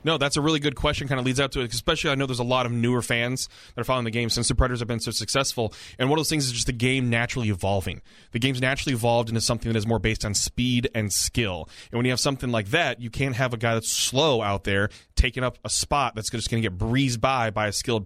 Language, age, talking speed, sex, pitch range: English, 20-39, 290 wpm, male, 115-135 Hz